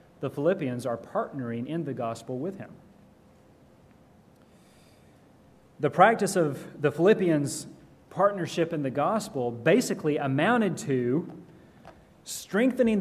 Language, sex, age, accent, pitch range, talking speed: English, male, 30-49, American, 145-195 Hz, 100 wpm